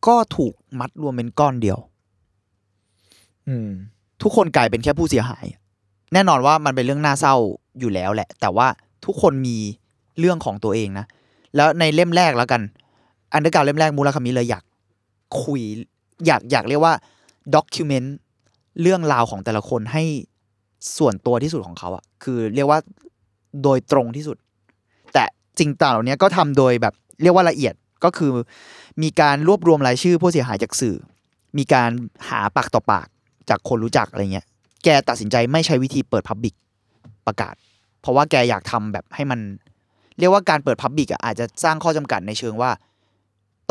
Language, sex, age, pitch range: Thai, male, 20-39, 105-145 Hz